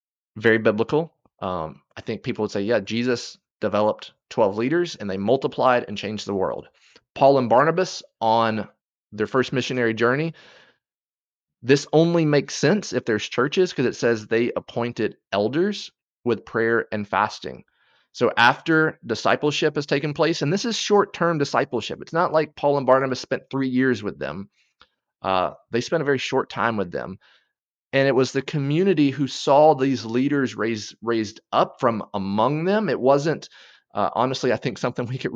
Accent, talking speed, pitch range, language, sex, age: American, 170 wpm, 110-140 Hz, English, male, 30-49